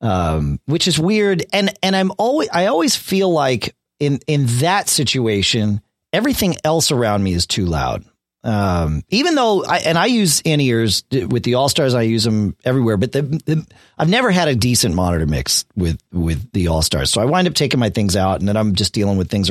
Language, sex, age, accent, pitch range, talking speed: English, male, 40-59, American, 100-145 Hz, 205 wpm